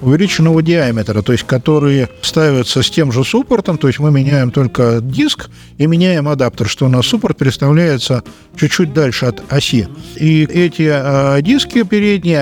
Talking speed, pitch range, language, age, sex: 160 wpm, 130-170 Hz, Russian, 50-69, male